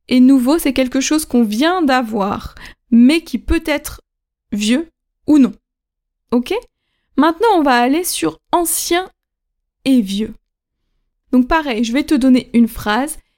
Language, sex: French, female